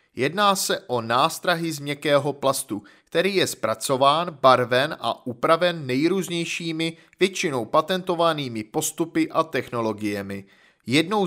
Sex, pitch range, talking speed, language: male, 125-175 Hz, 105 wpm, Czech